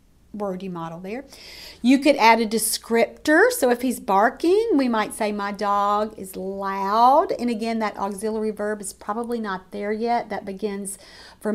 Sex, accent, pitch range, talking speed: female, American, 215-275 Hz, 165 wpm